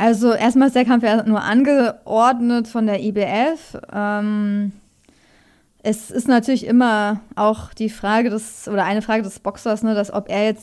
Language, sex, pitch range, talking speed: German, female, 205-245 Hz, 165 wpm